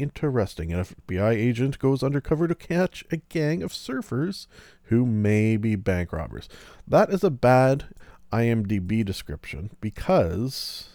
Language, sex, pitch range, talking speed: English, male, 100-140 Hz, 130 wpm